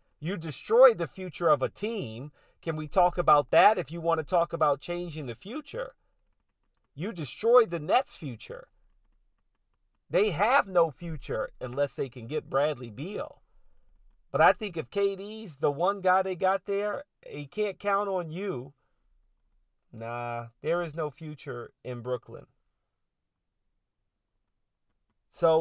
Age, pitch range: 40-59, 150-190 Hz